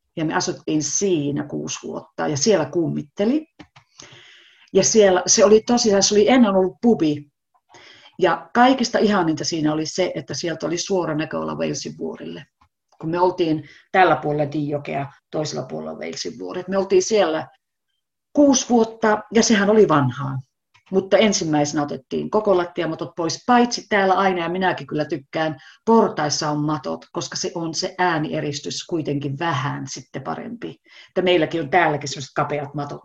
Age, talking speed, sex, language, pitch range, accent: 40-59, 150 wpm, female, Finnish, 145-190 Hz, native